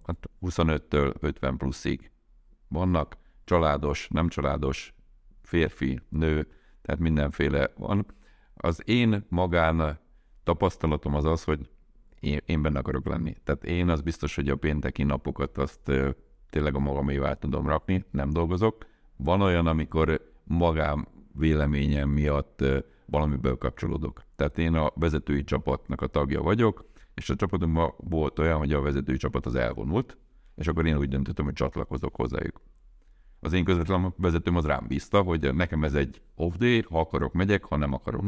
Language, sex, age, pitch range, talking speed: Hungarian, male, 50-69, 70-85 Hz, 145 wpm